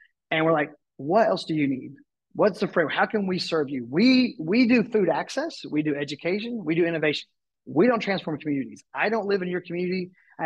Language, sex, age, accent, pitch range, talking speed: English, male, 30-49, American, 145-180 Hz, 220 wpm